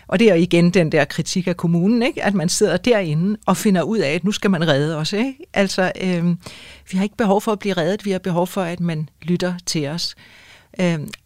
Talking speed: 245 wpm